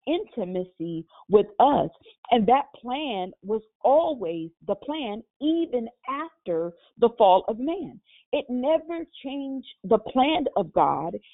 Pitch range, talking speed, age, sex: 200-265 Hz, 120 wpm, 40-59, female